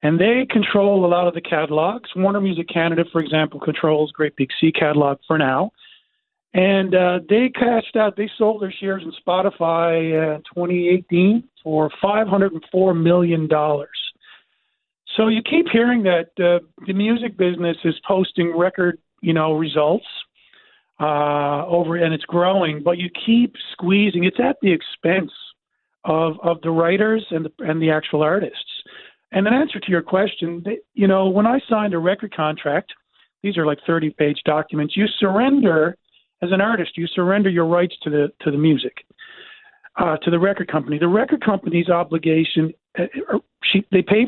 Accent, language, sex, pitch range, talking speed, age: American, English, male, 160-205 Hz, 165 wpm, 40-59